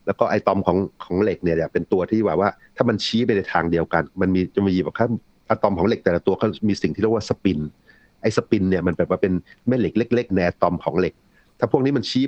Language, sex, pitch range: Thai, male, 85-110 Hz